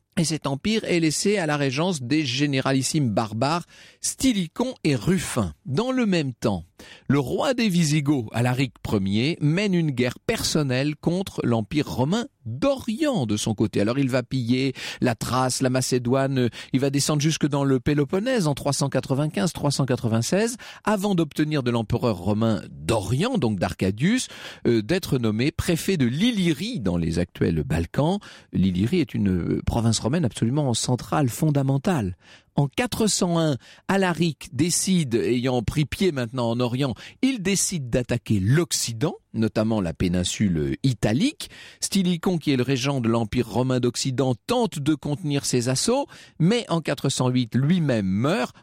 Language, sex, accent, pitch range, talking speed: French, male, French, 115-165 Hz, 140 wpm